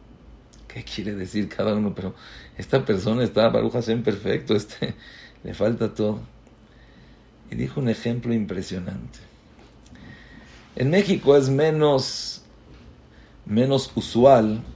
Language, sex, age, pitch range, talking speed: English, male, 50-69, 115-155 Hz, 110 wpm